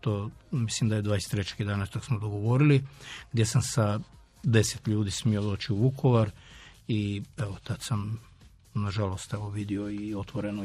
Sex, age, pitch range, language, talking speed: male, 50-69, 105-120 Hz, Croatian, 150 wpm